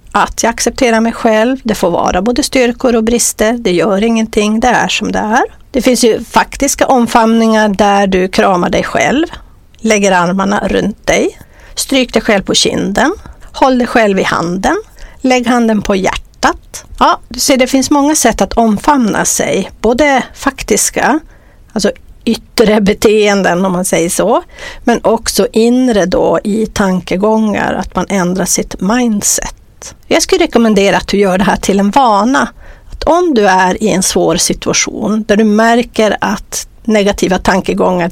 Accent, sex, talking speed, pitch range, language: native, female, 160 wpm, 195-245 Hz, Swedish